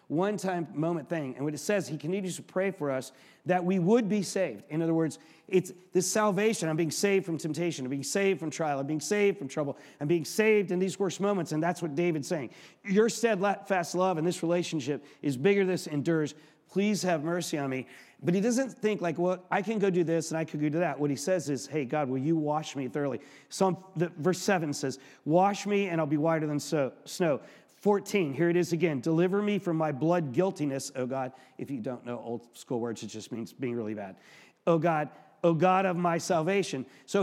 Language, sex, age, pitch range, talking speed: English, male, 40-59, 150-190 Hz, 230 wpm